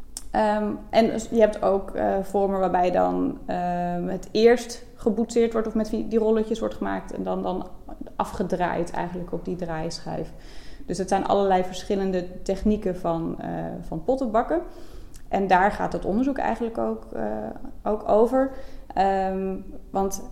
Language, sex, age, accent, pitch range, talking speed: Dutch, female, 20-39, Dutch, 170-220 Hz, 150 wpm